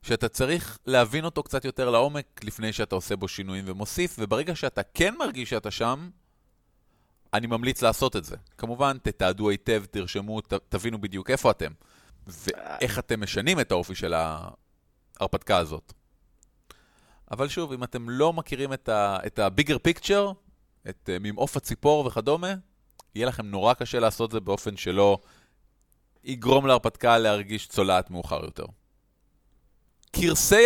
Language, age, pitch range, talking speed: Hebrew, 30-49, 105-140 Hz, 140 wpm